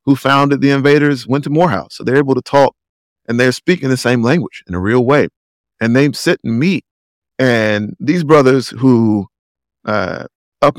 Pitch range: 95-125 Hz